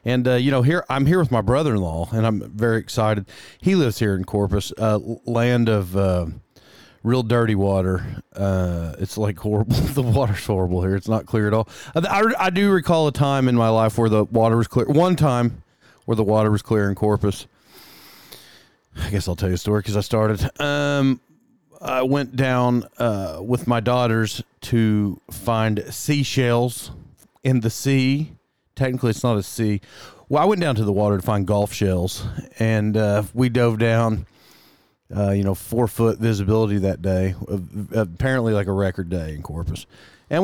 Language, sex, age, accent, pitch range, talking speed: English, male, 30-49, American, 105-130 Hz, 185 wpm